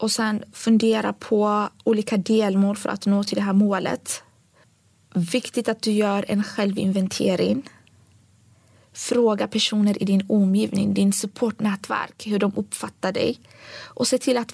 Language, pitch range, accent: Swedish, 185-240 Hz, native